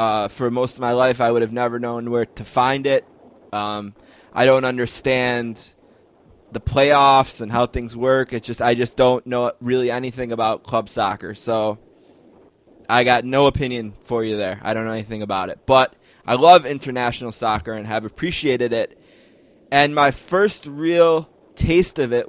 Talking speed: 180 wpm